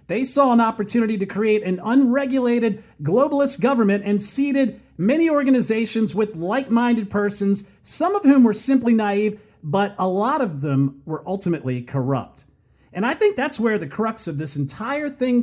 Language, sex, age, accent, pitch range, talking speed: English, male, 40-59, American, 165-230 Hz, 165 wpm